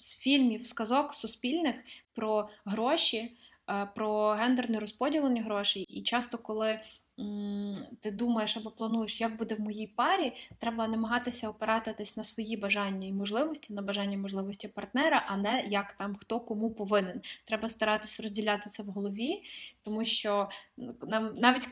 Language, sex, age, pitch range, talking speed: Ukrainian, female, 20-39, 210-240 Hz, 140 wpm